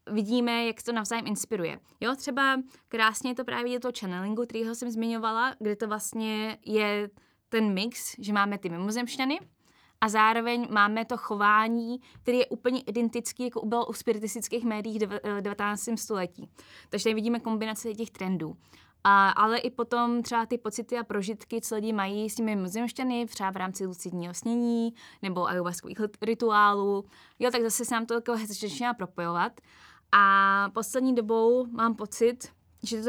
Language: Slovak